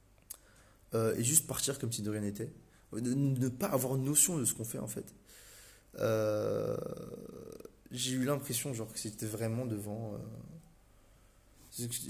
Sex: male